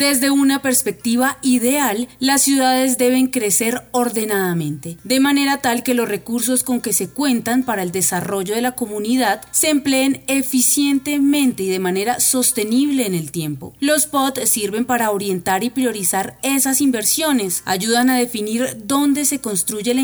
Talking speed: 155 wpm